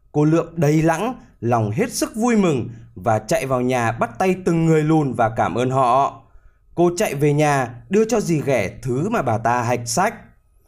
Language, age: Vietnamese, 20-39